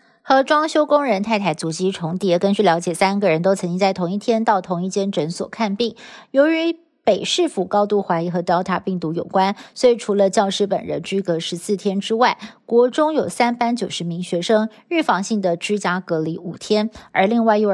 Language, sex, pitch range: Chinese, female, 185-235 Hz